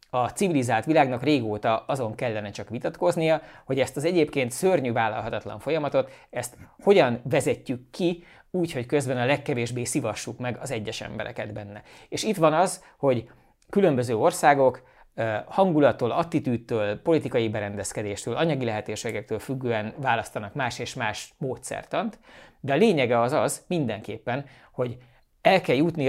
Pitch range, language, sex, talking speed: 110-145 Hz, Hungarian, male, 135 wpm